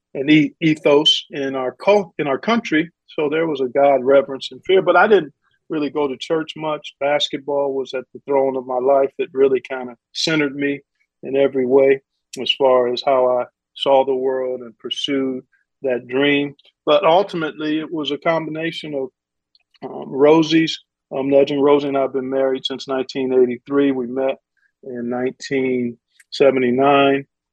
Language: English